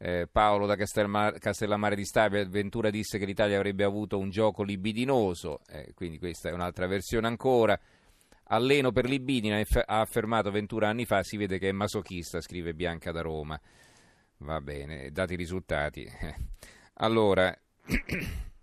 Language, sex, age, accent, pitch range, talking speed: Italian, male, 40-59, native, 90-105 Hz, 140 wpm